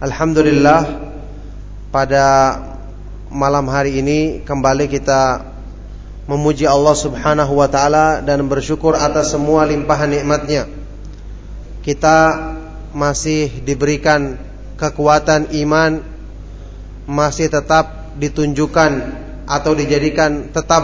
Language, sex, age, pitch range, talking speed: Malay, male, 20-39, 140-160 Hz, 85 wpm